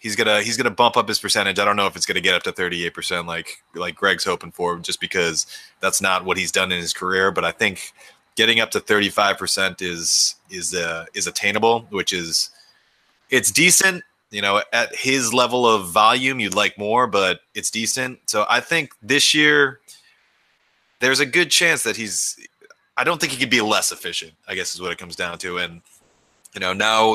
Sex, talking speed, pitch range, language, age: male, 210 wpm, 95-120 Hz, English, 30-49